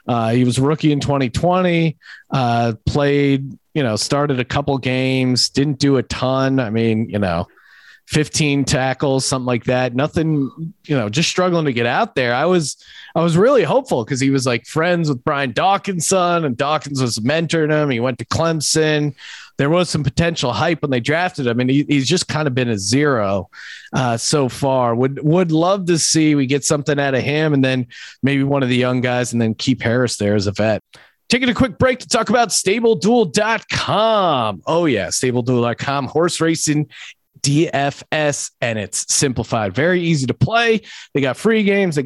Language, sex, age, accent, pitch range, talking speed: English, male, 30-49, American, 125-170 Hz, 190 wpm